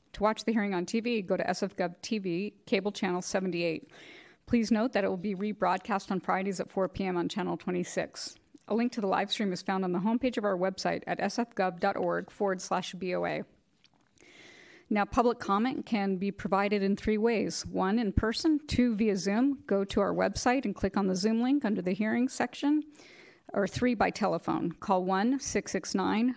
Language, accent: English, American